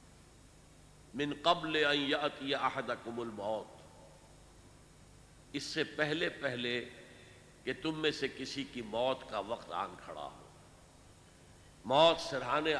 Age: 60-79